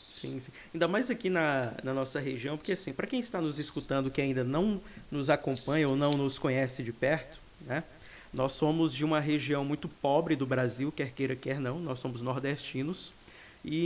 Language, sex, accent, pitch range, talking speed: Portuguese, male, Brazilian, 130-165 Hz, 195 wpm